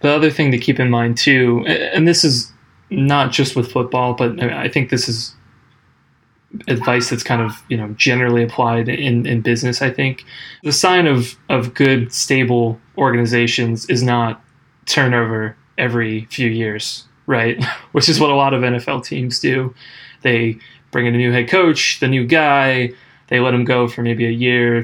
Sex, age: male, 20-39